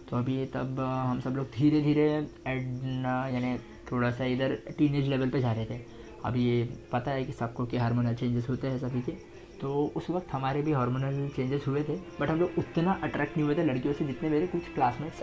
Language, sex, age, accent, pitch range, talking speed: Hindi, male, 20-39, native, 125-150 Hz, 215 wpm